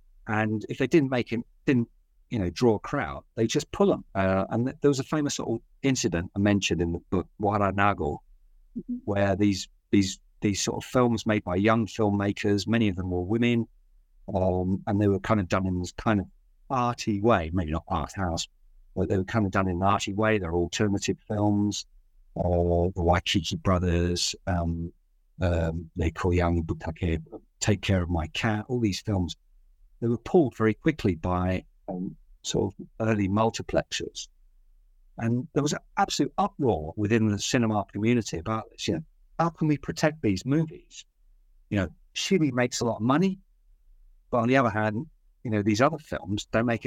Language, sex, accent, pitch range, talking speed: English, male, British, 90-115 Hz, 185 wpm